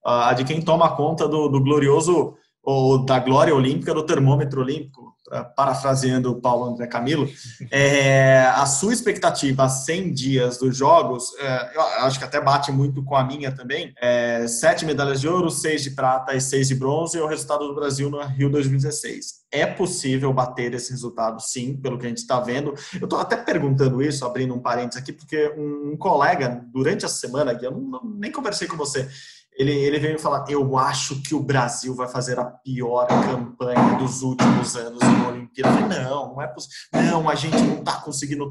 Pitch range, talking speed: 130-150 Hz, 195 wpm